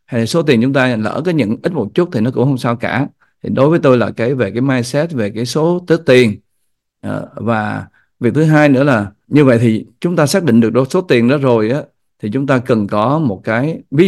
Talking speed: 245 wpm